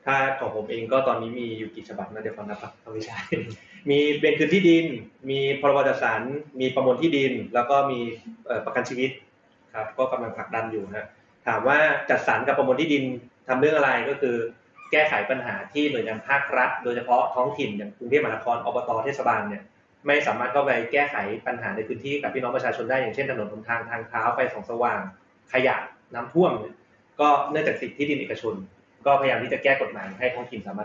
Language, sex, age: Thai, male, 20-39